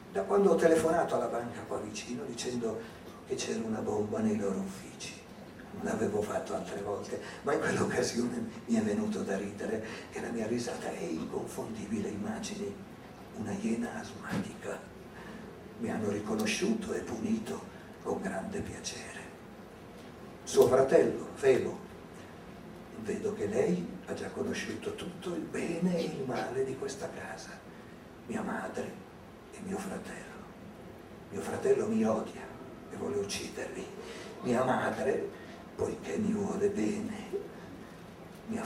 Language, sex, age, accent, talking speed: Italian, male, 50-69, native, 130 wpm